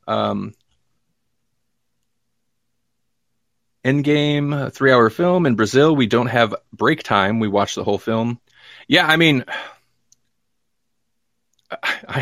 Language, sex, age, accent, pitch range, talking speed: English, male, 30-49, American, 115-175 Hz, 105 wpm